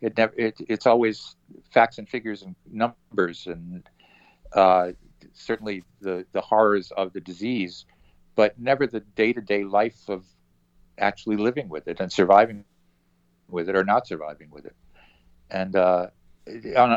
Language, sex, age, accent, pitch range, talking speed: English, male, 50-69, American, 90-110 Hz, 145 wpm